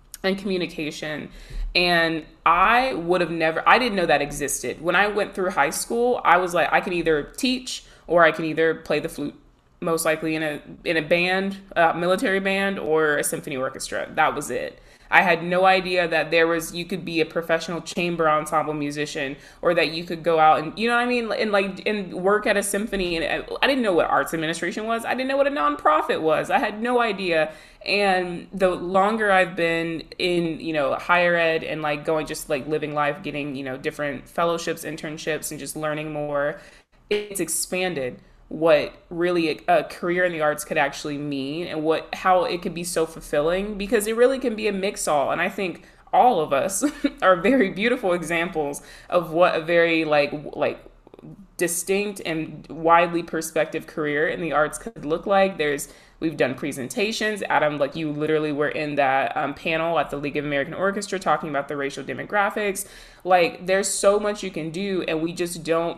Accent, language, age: American, English, 20-39